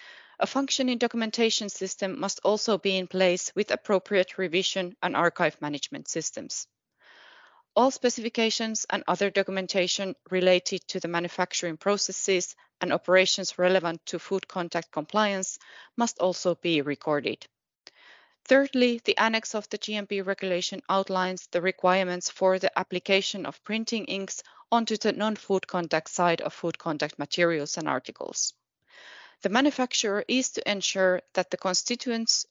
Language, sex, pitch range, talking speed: English, female, 180-215 Hz, 135 wpm